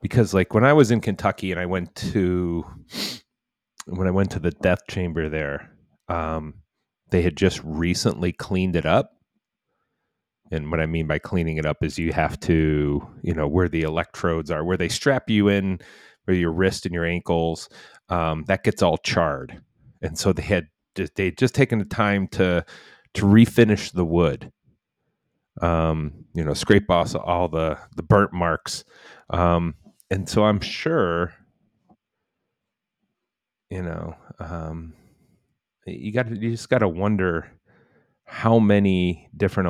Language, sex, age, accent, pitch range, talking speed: English, male, 30-49, American, 80-100 Hz, 160 wpm